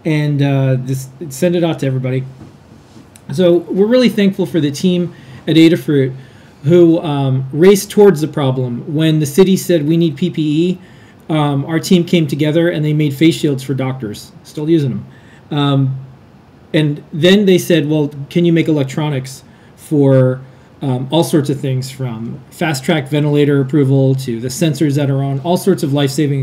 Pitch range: 130-165 Hz